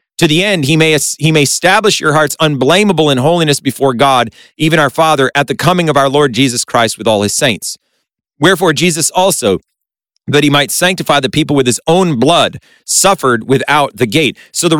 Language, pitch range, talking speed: English, 130-165 Hz, 200 wpm